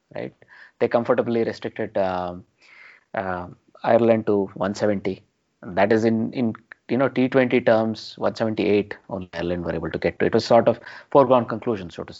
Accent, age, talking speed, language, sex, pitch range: Indian, 30-49, 170 wpm, English, male, 95-125 Hz